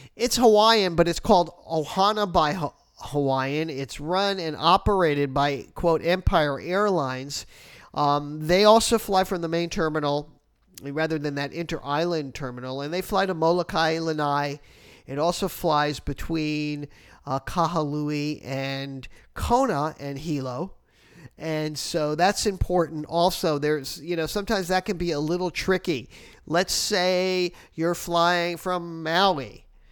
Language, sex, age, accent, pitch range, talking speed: English, male, 50-69, American, 150-190 Hz, 130 wpm